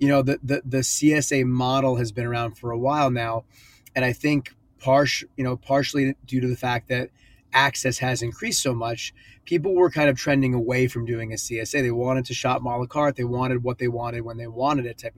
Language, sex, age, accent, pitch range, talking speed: English, male, 30-49, American, 120-135 Hz, 225 wpm